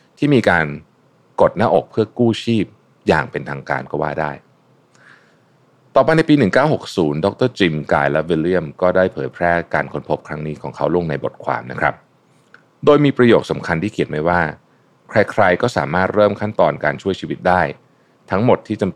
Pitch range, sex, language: 75-110 Hz, male, Thai